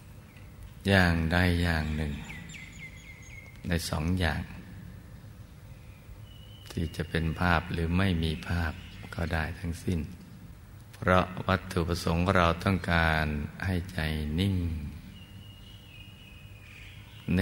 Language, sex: Thai, male